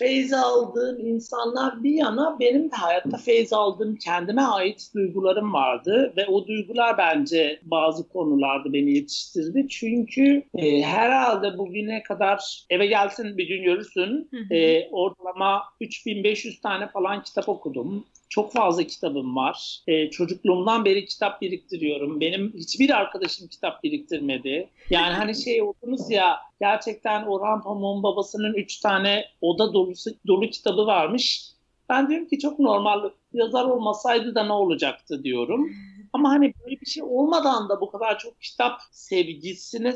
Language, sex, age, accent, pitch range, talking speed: Turkish, male, 60-79, native, 180-245 Hz, 140 wpm